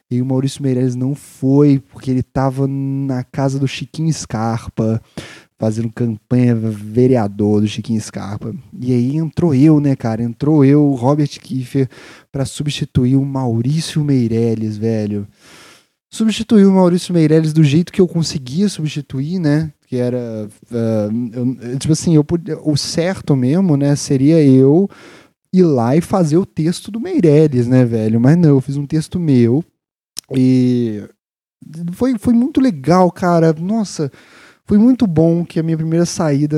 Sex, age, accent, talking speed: male, 20-39, Brazilian, 155 wpm